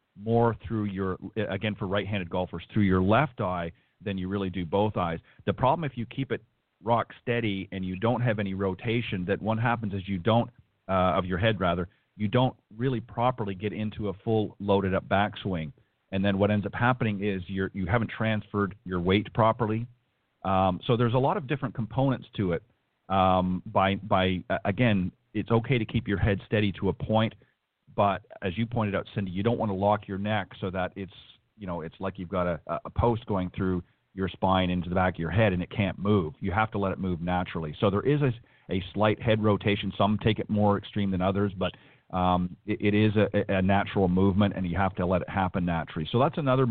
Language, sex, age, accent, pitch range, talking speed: English, male, 40-59, American, 95-110 Hz, 220 wpm